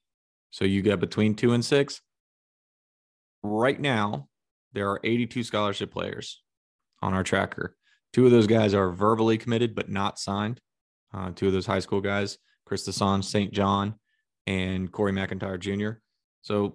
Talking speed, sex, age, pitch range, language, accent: 155 wpm, male, 20-39, 95-115 Hz, English, American